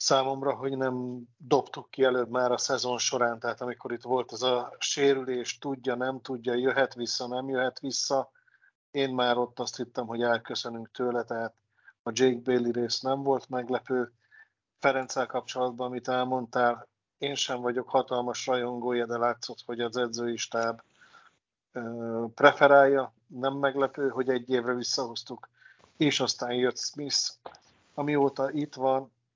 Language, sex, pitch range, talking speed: Hungarian, male, 120-135 Hz, 140 wpm